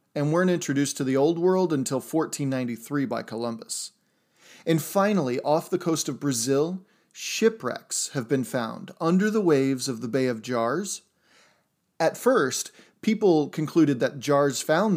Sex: male